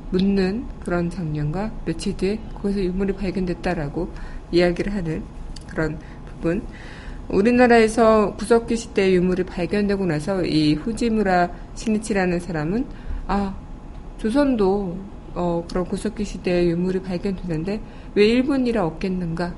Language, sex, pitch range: Korean, female, 160-205 Hz